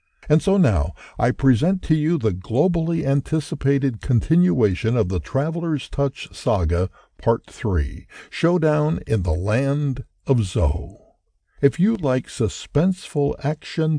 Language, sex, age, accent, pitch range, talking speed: English, male, 60-79, American, 95-150 Hz, 125 wpm